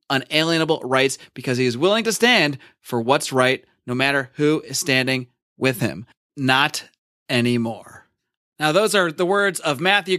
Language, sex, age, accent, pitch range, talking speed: English, male, 30-49, American, 155-215 Hz, 160 wpm